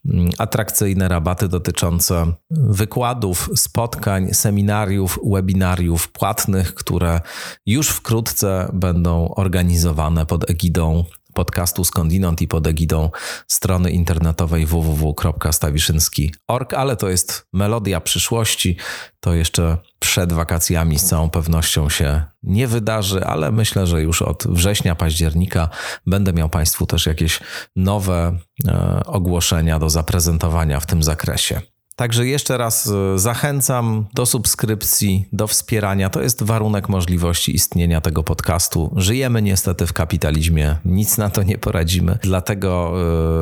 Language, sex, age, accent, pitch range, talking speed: Polish, male, 30-49, native, 85-105 Hz, 115 wpm